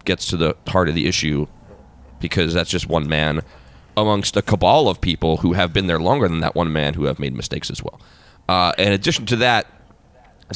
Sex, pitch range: male, 85-115 Hz